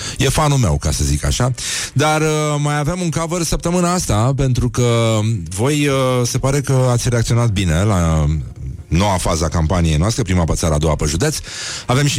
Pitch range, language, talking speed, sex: 90-125 Hz, Romanian, 185 wpm, male